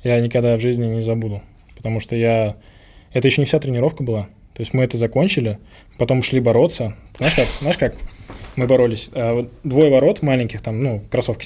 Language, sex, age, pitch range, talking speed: Russian, male, 10-29, 110-125 Hz, 195 wpm